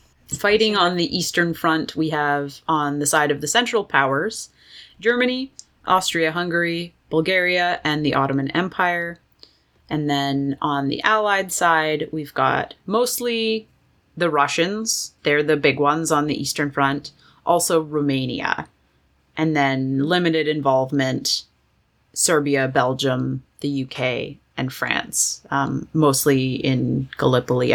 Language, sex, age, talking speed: English, female, 30-49, 125 wpm